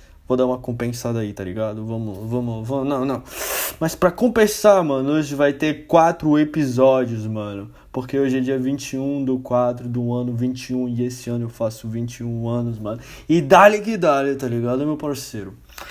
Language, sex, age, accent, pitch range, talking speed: Portuguese, male, 20-39, Brazilian, 120-155 Hz, 180 wpm